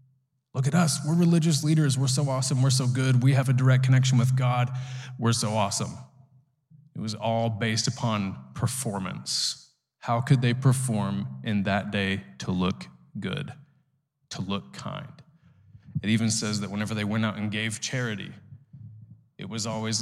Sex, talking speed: male, 165 wpm